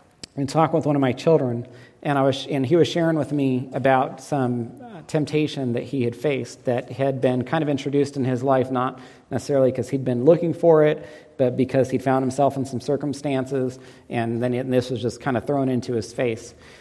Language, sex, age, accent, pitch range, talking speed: English, male, 40-59, American, 125-155 Hz, 215 wpm